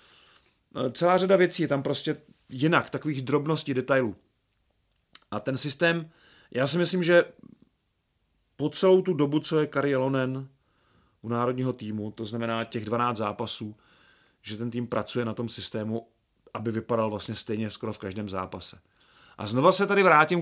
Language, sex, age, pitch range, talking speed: Czech, male, 30-49, 110-140 Hz, 155 wpm